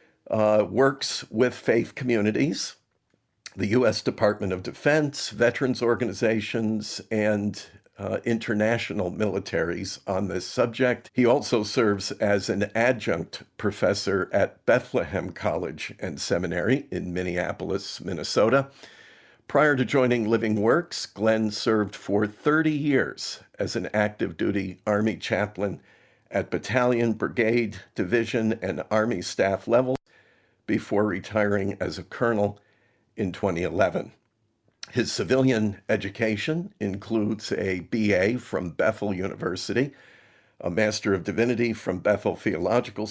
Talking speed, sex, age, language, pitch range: 115 wpm, male, 50-69, English, 100-120 Hz